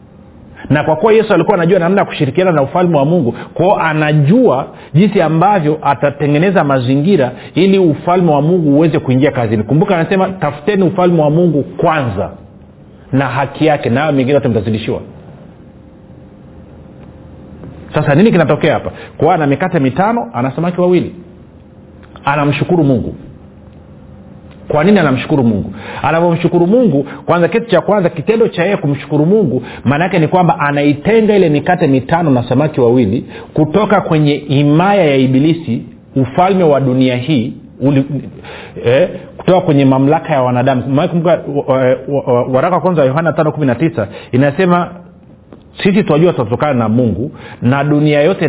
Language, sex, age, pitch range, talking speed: Swahili, male, 40-59, 130-175 Hz, 130 wpm